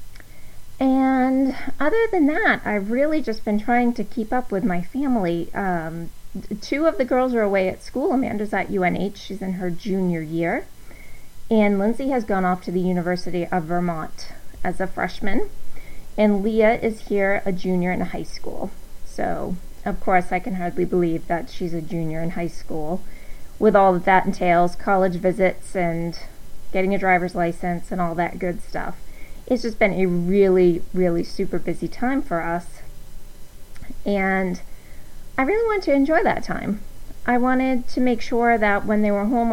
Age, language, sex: 30-49, English, female